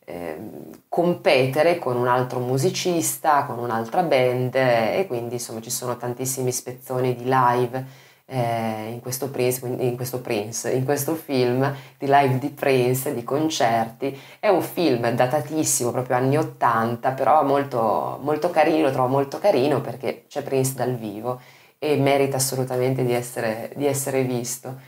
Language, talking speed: Italian, 145 wpm